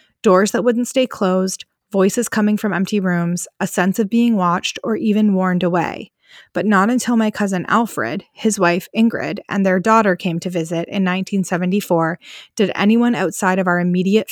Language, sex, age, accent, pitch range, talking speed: English, female, 20-39, American, 185-215 Hz, 175 wpm